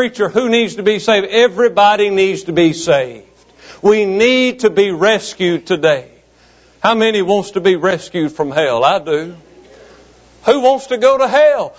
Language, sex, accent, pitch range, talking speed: English, male, American, 215-270 Hz, 170 wpm